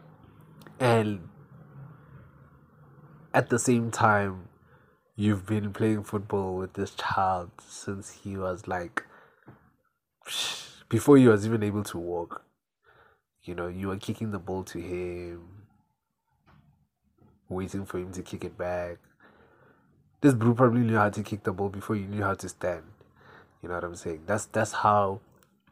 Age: 20-39